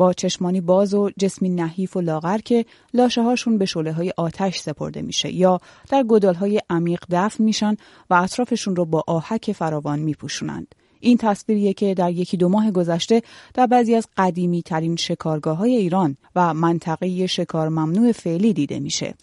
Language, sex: Persian, female